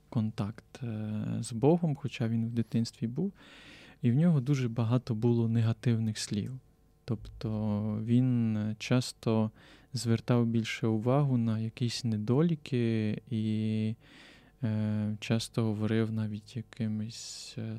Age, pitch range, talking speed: 20-39, 110-125 Hz, 100 wpm